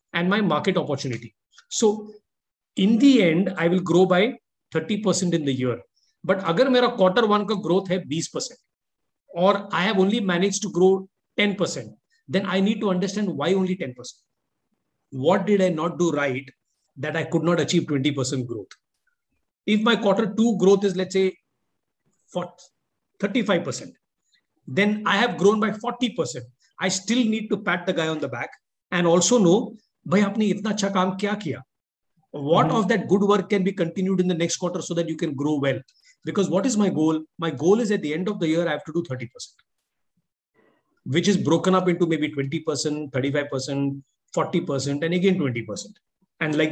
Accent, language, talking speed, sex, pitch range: native, Hindi, 165 wpm, male, 155-200 Hz